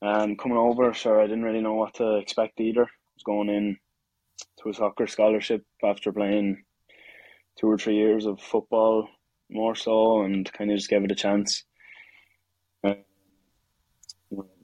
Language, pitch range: English, 100-110 Hz